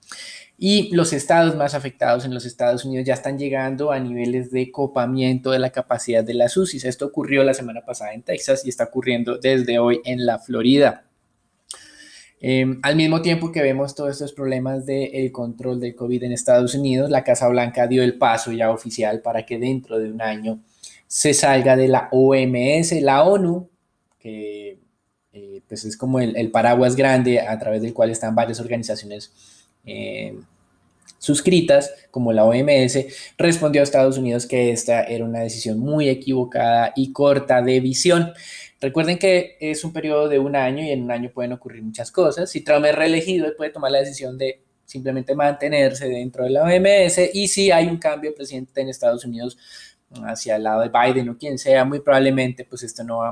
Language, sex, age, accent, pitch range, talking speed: Spanish, male, 20-39, Colombian, 120-140 Hz, 185 wpm